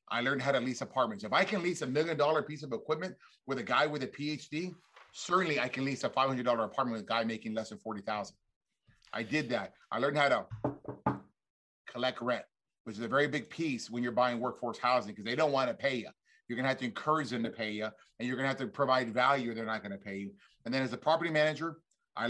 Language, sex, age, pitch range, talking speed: English, male, 30-49, 120-155 Hz, 250 wpm